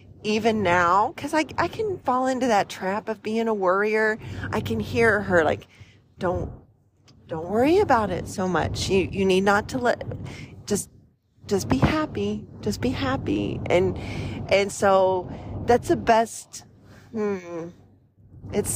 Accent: American